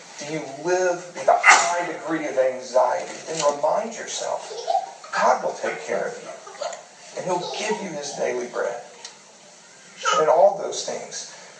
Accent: American